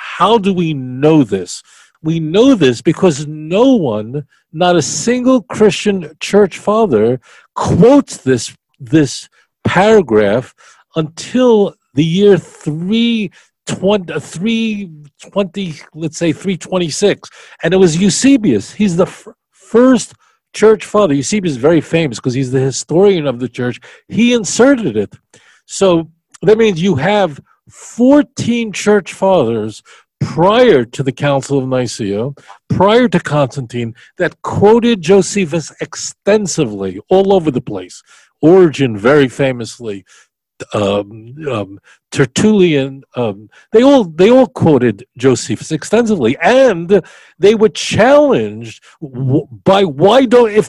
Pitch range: 135-205 Hz